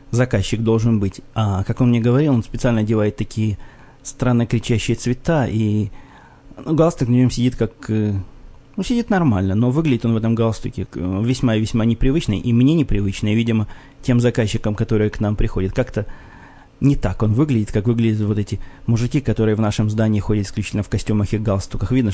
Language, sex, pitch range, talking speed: Russian, male, 105-125 Hz, 180 wpm